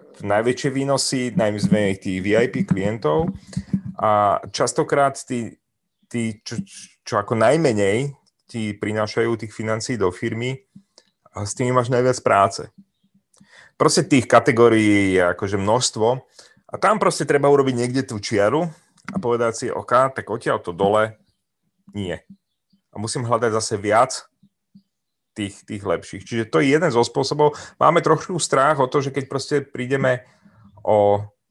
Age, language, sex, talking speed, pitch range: 30-49, Czech, male, 140 wpm, 105-140 Hz